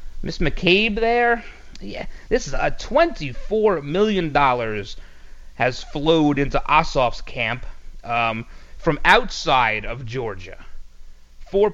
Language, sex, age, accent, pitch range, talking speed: English, male, 30-49, American, 120-190 Hz, 105 wpm